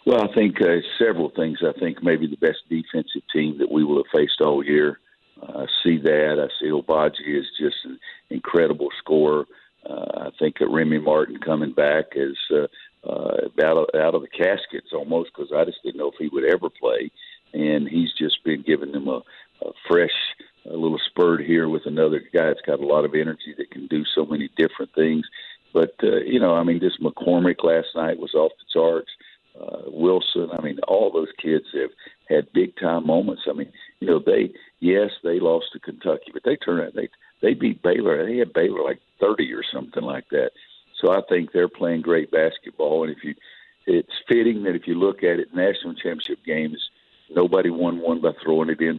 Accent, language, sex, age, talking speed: American, English, male, 50-69, 205 wpm